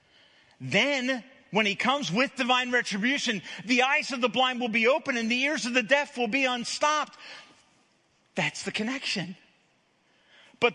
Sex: male